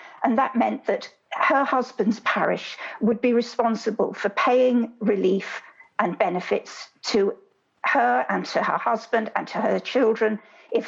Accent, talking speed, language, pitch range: British, 145 wpm, English, 210-250 Hz